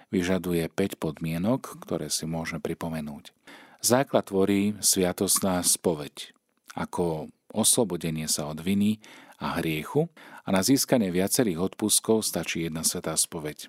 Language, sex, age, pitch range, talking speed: Slovak, male, 40-59, 80-100 Hz, 120 wpm